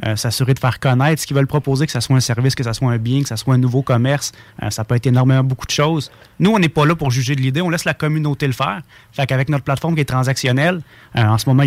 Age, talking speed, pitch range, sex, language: 30-49, 305 wpm, 125-150 Hz, male, English